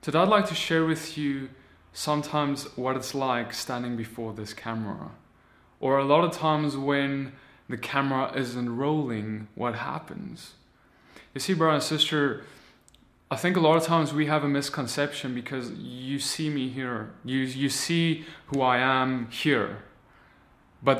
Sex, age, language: male, 20-39, English